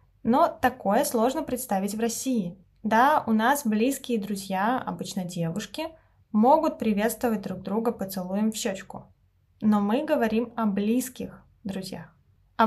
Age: 20-39